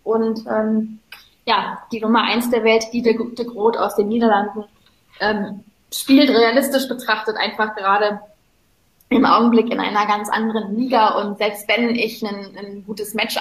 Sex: female